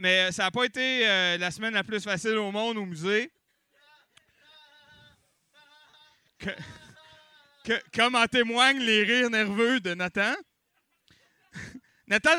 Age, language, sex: 30-49, French, male